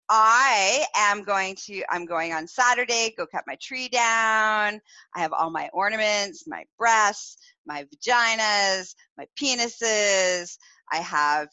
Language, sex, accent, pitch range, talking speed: English, female, American, 165-230 Hz, 135 wpm